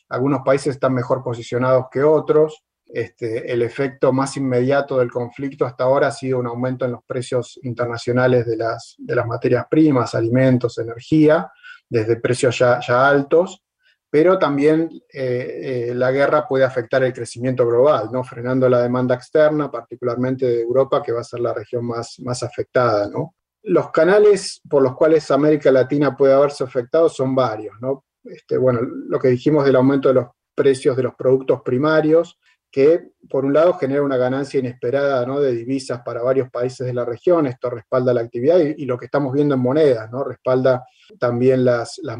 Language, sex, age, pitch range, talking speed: Spanish, male, 30-49, 120-140 Hz, 175 wpm